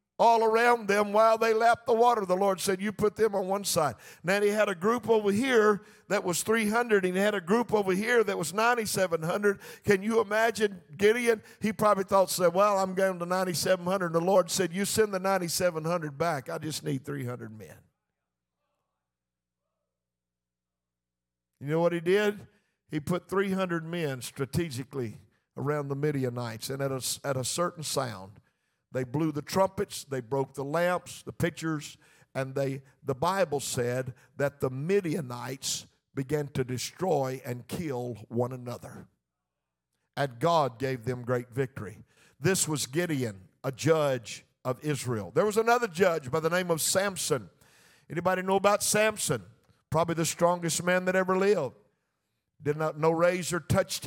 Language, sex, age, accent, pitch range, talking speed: English, male, 50-69, American, 135-195 Hz, 160 wpm